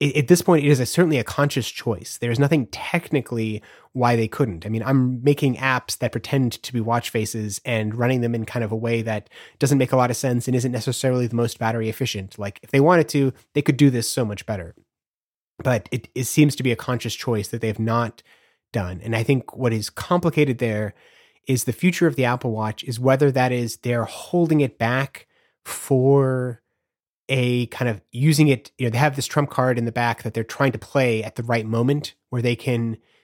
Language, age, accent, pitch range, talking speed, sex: English, 30-49, American, 115-140 Hz, 225 wpm, male